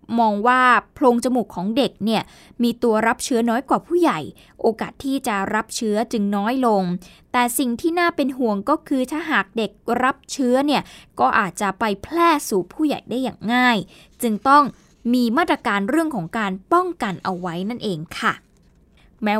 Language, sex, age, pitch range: Thai, female, 20-39, 225-290 Hz